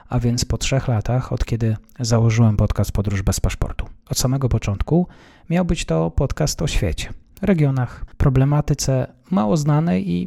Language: Polish